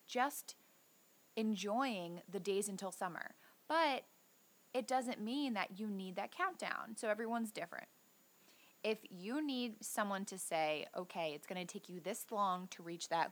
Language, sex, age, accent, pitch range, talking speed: English, female, 20-39, American, 195-260 Hz, 160 wpm